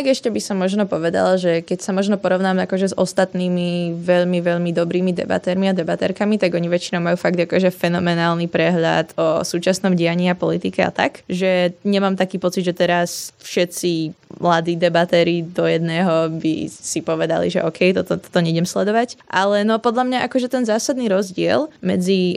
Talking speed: 175 wpm